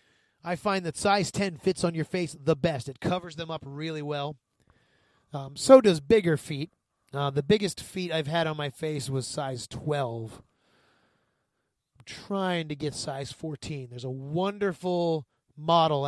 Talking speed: 165 wpm